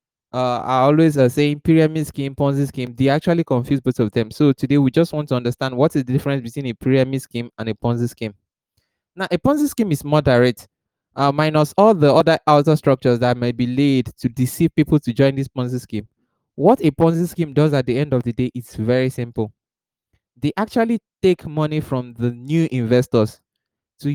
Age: 20-39